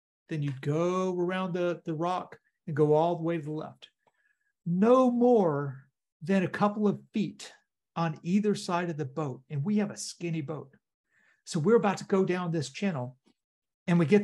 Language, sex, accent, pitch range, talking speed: English, male, American, 155-200 Hz, 190 wpm